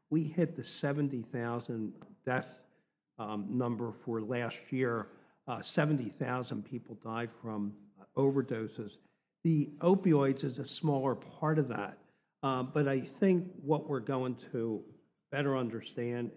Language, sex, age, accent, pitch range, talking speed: English, male, 50-69, American, 110-135 Hz, 125 wpm